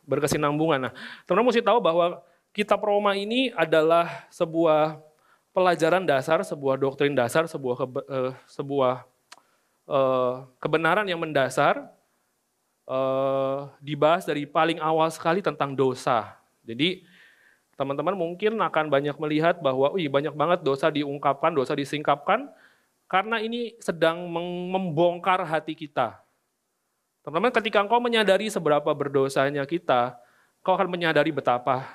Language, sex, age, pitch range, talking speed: Indonesian, male, 30-49, 135-175 Hz, 115 wpm